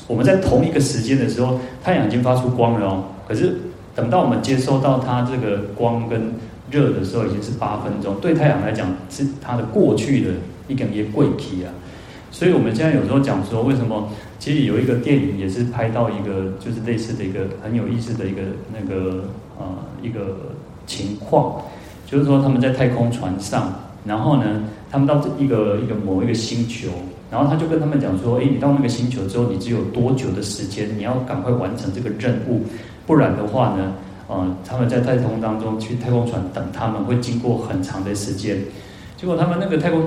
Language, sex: Chinese, male